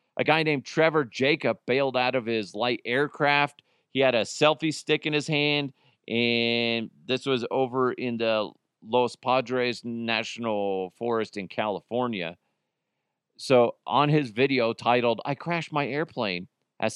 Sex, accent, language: male, American, English